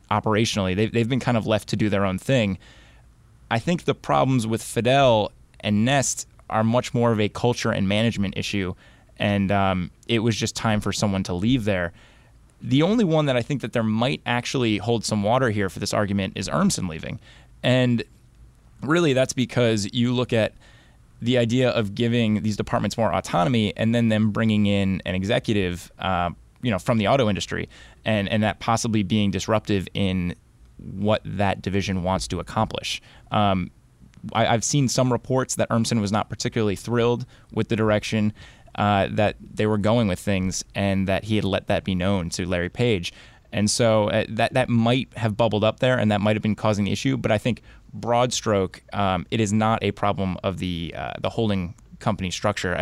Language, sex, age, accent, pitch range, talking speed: English, male, 20-39, American, 100-120 Hz, 195 wpm